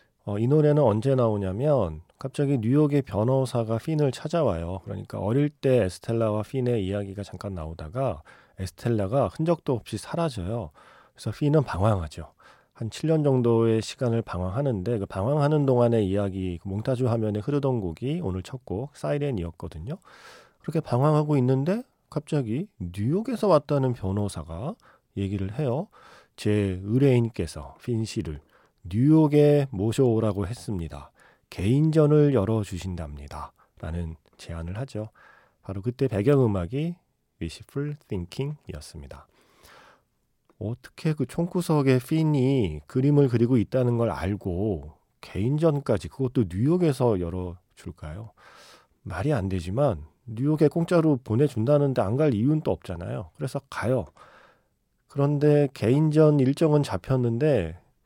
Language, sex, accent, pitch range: Korean, male, native, 100-145 Hz